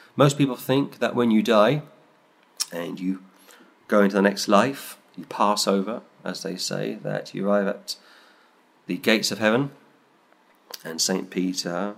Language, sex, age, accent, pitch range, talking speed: English, male, 40-59, British, 95-105 Hz, 155 wpm